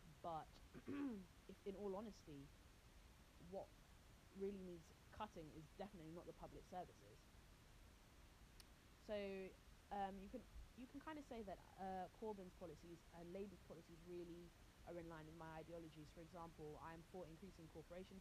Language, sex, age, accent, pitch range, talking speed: English, female, 20-39, British, 155-185 Hz, 140 wpm